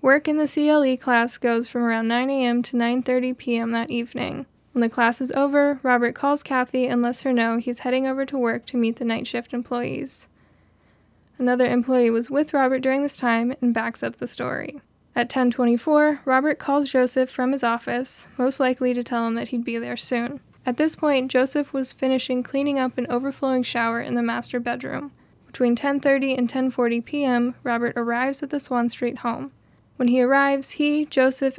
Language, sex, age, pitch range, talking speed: English, female, 10-29, 240-270 Hz, 190 wpm